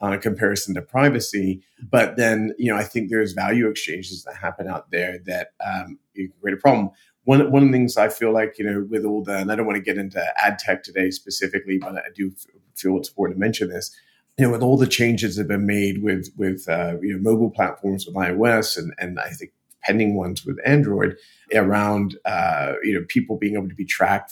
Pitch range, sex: 95-120 Hz, male